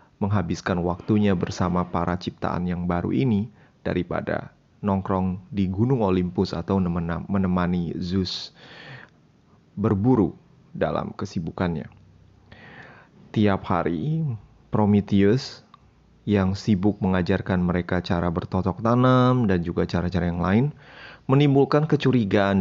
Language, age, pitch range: Indonesian, 30-49, 90-110 Hz